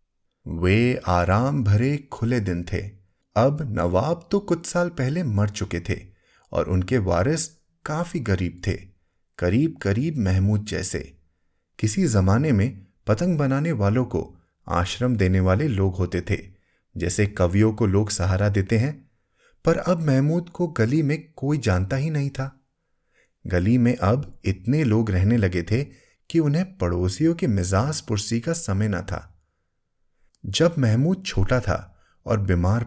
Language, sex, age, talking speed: Hindi, male, 30-49, 145 wpm